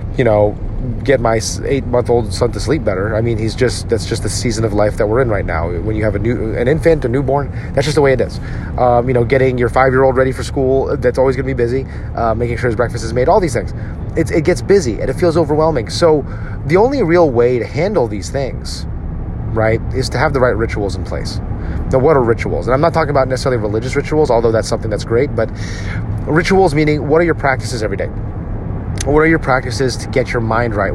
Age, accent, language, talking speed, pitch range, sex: 30-49, American, English, 245 wpm, 105-135 Hz, male